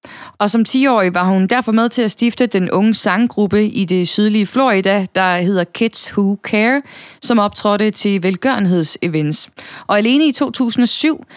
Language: Danish